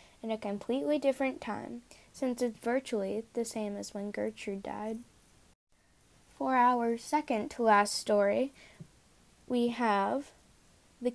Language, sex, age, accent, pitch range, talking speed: English, female, 10-29, American, 220-270 Hz, 115 wpm